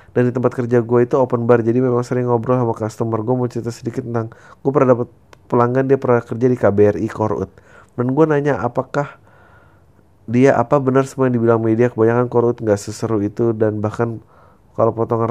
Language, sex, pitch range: Indonesian, male, 110-125 Hz